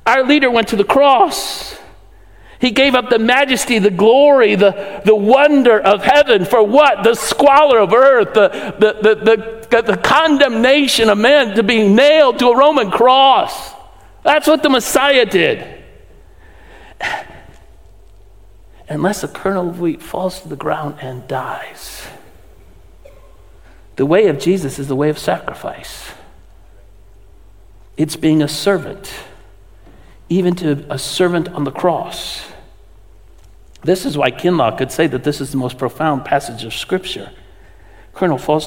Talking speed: 145 wpm